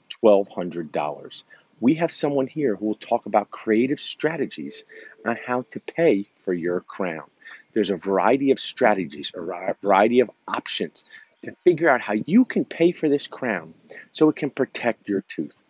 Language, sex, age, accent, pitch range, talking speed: English, male, 40-59, American, 100-145 Hz, 170 wpm